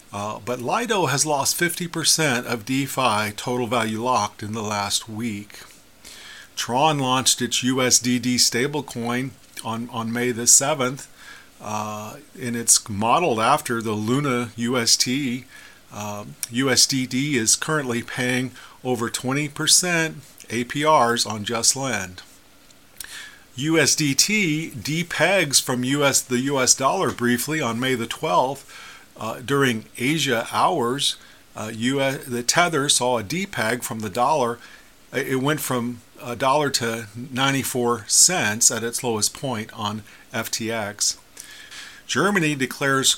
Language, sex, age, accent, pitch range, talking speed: English, male, 40-59, American, 115-140 Hz, 120 wpm